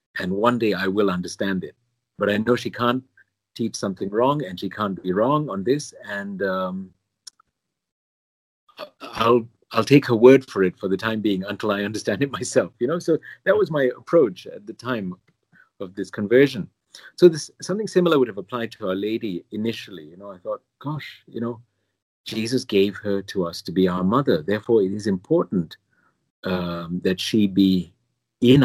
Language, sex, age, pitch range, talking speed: English, male, 50-69, 95-125 Hz, 185 wpm